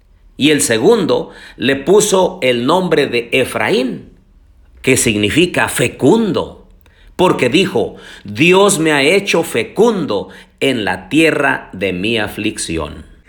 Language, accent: Spanish, Mexican